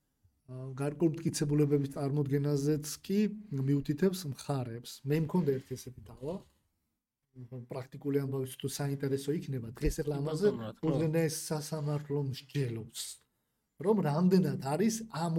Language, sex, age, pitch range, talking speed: English, male, 40-59, 130-180 Hz, 80 wpm